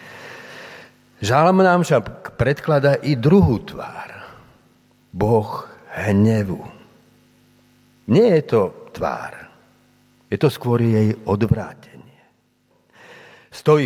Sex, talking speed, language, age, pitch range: male, 80 wpm, Slovak, 50-69, 105-140 Hz